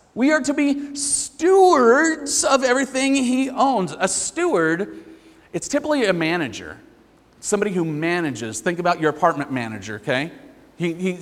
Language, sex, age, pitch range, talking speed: English, male, 40-59, 165-250 Hz, 135 wpm